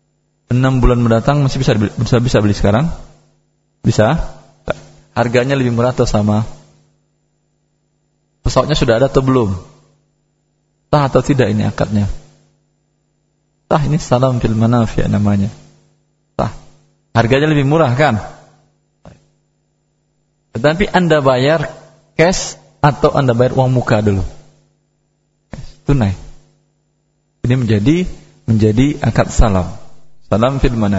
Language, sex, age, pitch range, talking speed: Indonesian, male, 20-39, 105-140 Hz, 105 wpm